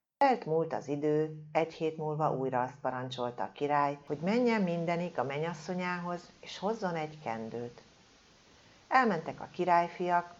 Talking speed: 135 wpm